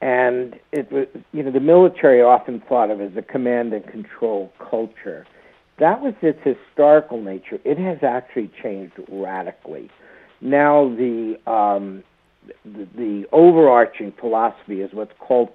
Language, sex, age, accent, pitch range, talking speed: English, male, 60-79, American, 120-165 Hz, 140 wpm